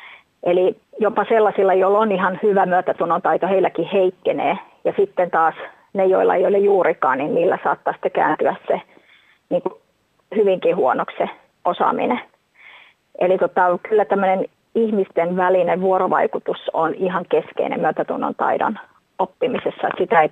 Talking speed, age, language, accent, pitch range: 130 wpm, 30-49, Finnish, native, 185-225 Hz